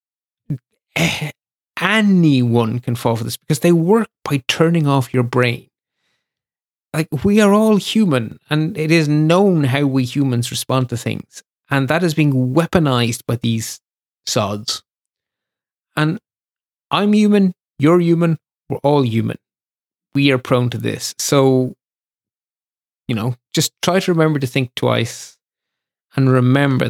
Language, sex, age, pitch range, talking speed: English, male, 30-49, 120-150 Hz, 135 wpm